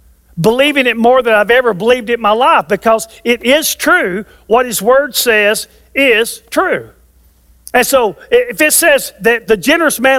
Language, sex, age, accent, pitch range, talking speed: English, male, 50-69, American, 215-295 Hz, 175 wpm